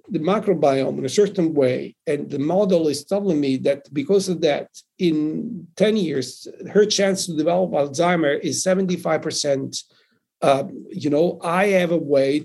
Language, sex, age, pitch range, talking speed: English, male, 60-79, 145-185 Hz, 165 wpm